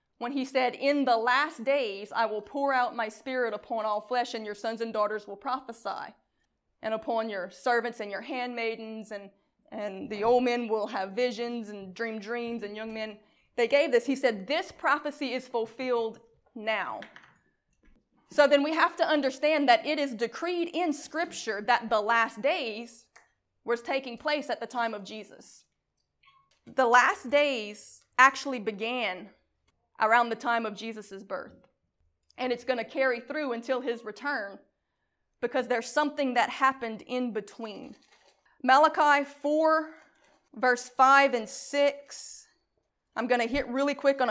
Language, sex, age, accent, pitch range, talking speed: English, female, 20-39, American, 220-270 Hz, 160 wpm